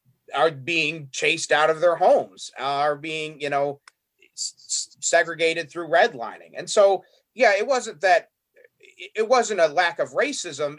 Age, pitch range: 30-49, 145-205 Hz